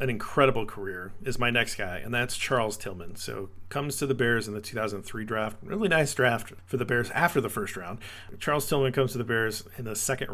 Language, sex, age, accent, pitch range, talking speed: English, male, 40-59, American, 100-130 Hz, 225 wpm